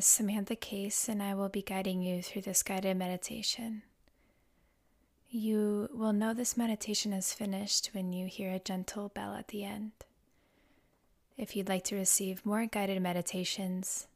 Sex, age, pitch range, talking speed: female, 20-39, 175-205 Hz, 155 wpm